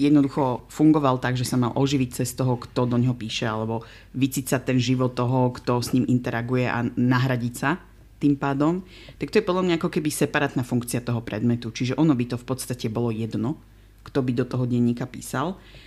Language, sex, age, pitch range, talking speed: Slovak, female, 30-49, 120-140 Hz, 195 wpm